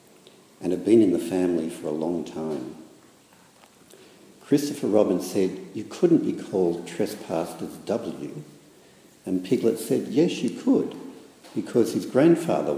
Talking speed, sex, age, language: 130 wpm, male, 60-79, English